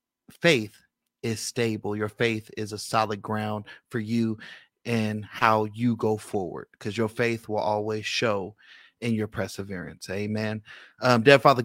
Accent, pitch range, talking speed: American, 110-130 Hz, 150 wpm